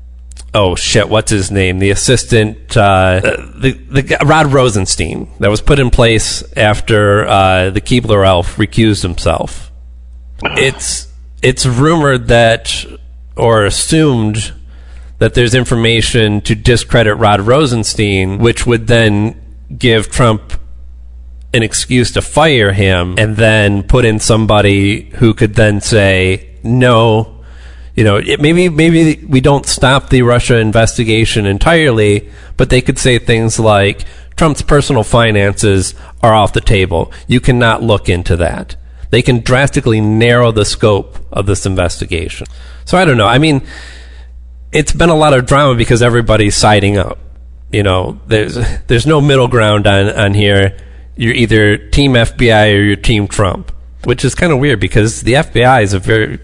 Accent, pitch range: American, 95-120 Hz